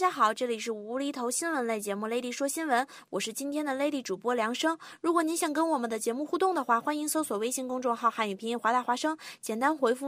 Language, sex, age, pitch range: Chinese, female, 20-39, 225-310 Hz